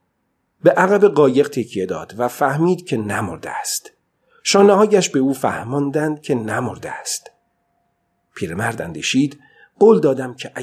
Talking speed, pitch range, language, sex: 125 wpm, 120-165 Hz, Persian, male